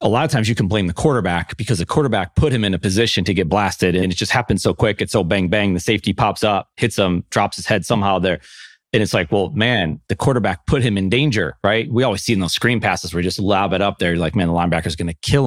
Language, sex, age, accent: English, male, 30-49, American